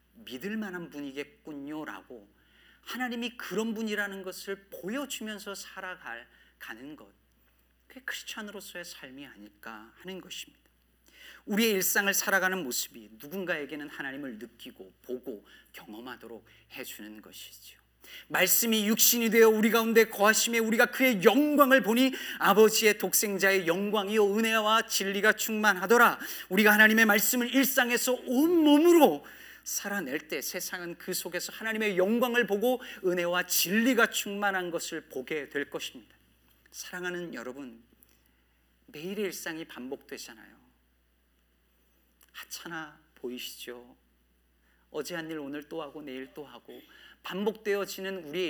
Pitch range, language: 135-225 Hz, Korean